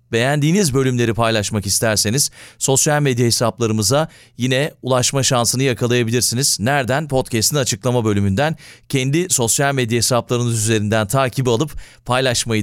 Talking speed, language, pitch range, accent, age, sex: 110 wpm, Turkish, 110-145 Hz, native, 40-59, male